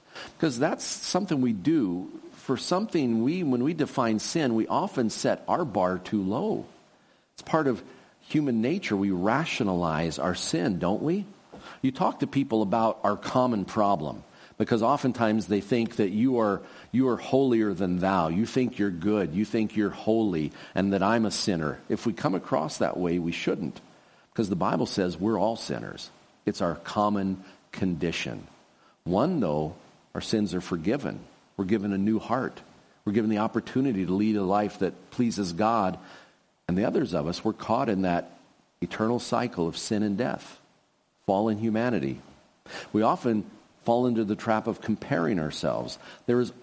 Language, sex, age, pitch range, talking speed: English, male, 50-69, 100-130 Hz, 170 wpm